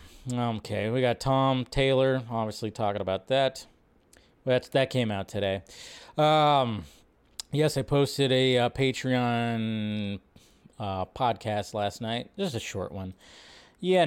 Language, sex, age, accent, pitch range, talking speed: English, male, 30-49, American, 120-165 Hz, 130 wpm